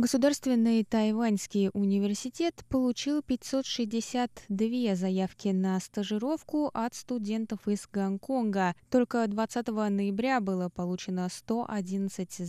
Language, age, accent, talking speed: Russian, 20-39, native, 85 wpm